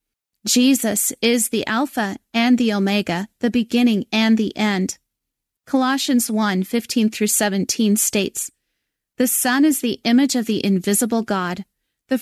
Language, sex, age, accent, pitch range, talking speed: English, female, 30-49, American, 205-245 Hz, 130 wpm